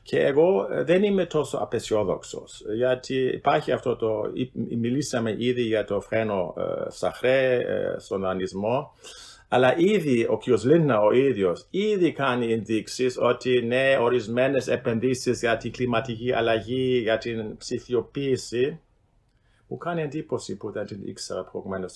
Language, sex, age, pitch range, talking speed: Greek, male, 50-69, 110-140 Hz, 130 wpm